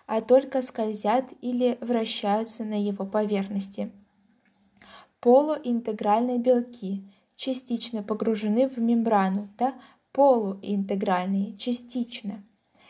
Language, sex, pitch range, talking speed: Russian, female, 210-250 Hz, 80 wpm